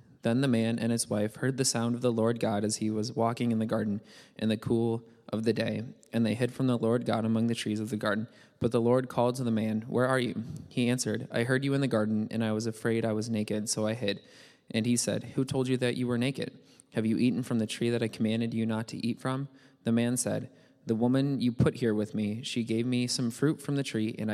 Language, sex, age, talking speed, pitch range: English, male, 20-39, 270 wpm, 110-125 Hz